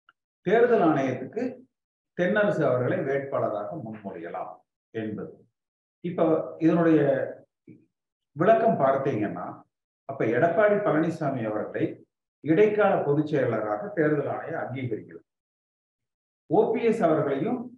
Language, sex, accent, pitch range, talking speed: Tamil, male, native, 125-205 Hz, 80 wpm